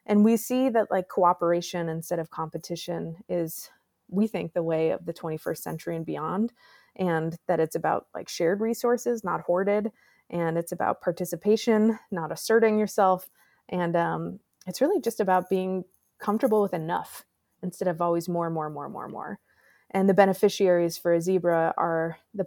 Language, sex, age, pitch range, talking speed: English, female, 20-39, 170-215 Hz, 165 wpm